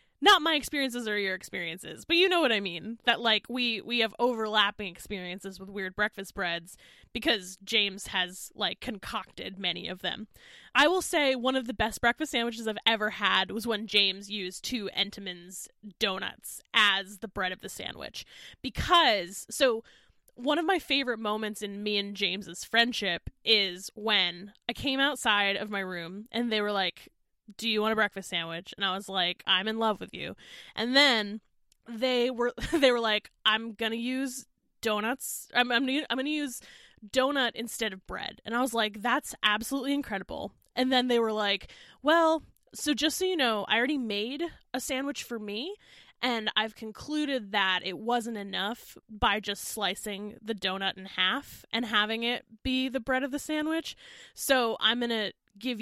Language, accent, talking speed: English, American, 185 wpm